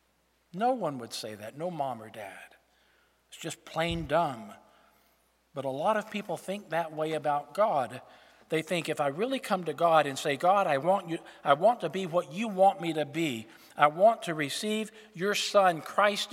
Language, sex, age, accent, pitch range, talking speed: English, male, 50-69, American, 150-195 Hz, 200 wpm